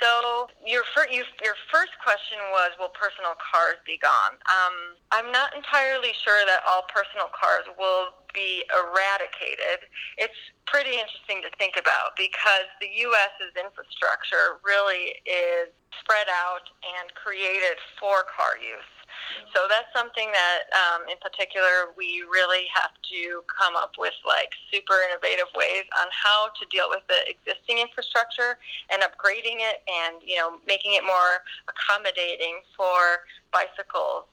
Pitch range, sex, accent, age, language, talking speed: 180-230 Hz, female, American, 20-39, English, 140 wpm